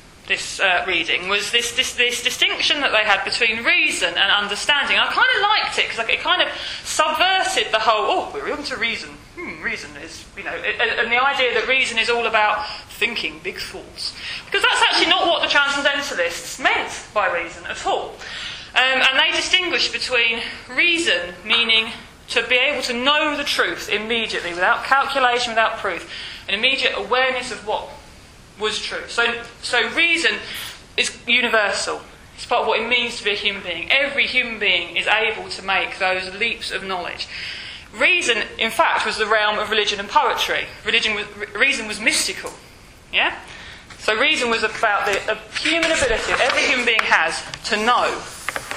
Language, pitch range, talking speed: English, 215-300 Hz, 175 wpm